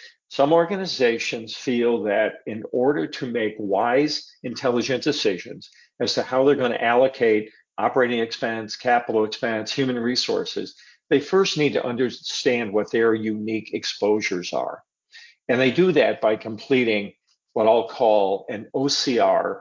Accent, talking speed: American, 140 wpm